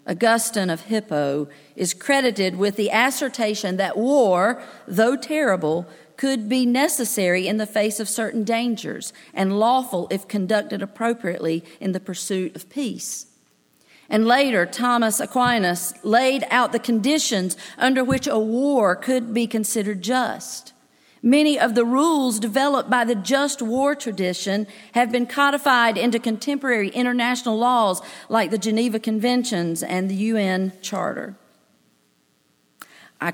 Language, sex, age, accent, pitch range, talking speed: English, female, 50-69, American, 190-250 Hz, 130 wpm